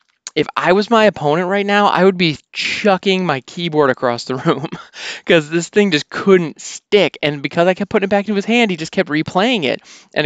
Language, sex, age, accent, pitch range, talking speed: English, male, 20-39, American, 150-205 Hz, 220 wpm